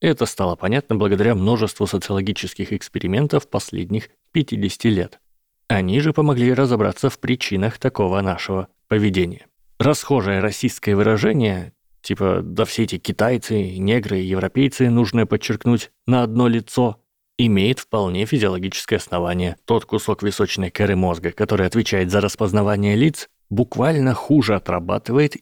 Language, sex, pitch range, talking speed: Russian, male, 95-120 Hz, 120 wpm